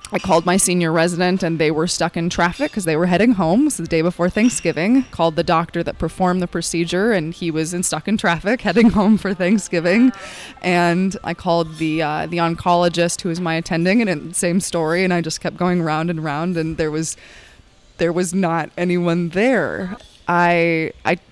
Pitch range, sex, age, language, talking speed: 160-185 Hz, female, 20-39, English, 200 wpm